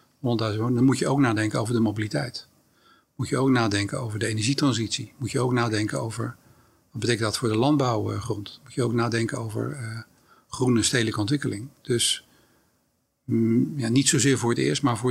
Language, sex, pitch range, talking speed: Dutch, male, 110-130 Hz, 180 wpm